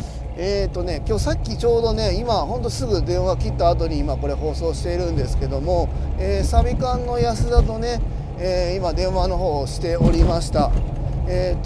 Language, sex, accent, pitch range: Japanese, male, native, 120-200 Hz